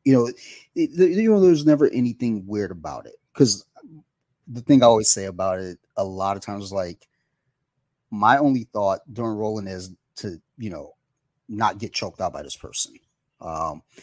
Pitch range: 95-120 Hz